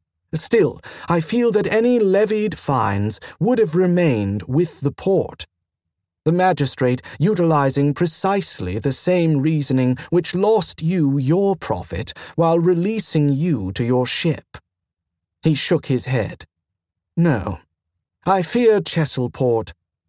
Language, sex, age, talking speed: English, male, 40-59, 115 wpm